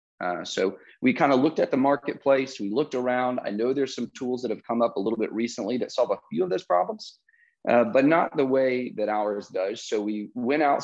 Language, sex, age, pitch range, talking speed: English, male, 30-49, 105-130 Hz, 245 wpm